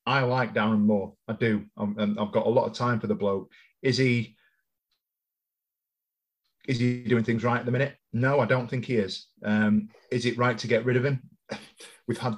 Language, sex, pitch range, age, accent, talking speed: English, male, 105-125 Hz, 30-49, British, 210 wpm